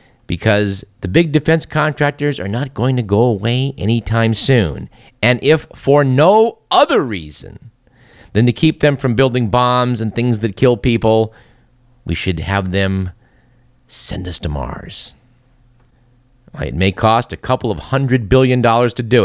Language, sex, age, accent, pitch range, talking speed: English, male, 50-69, American, 105-130 Hz, 155 wpm